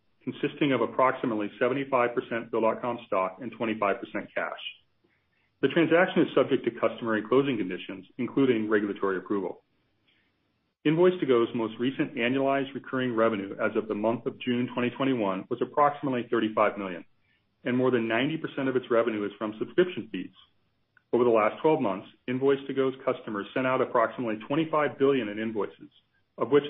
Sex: male